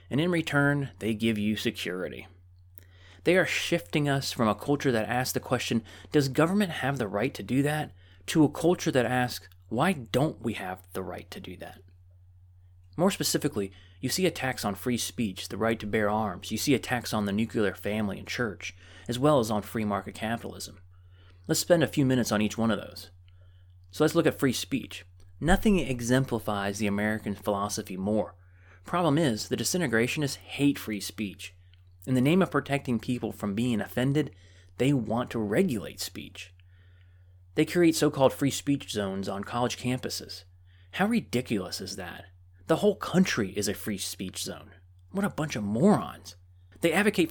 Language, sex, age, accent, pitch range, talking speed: English, male, 30-49, American, 95-135 Hz, 180 wpm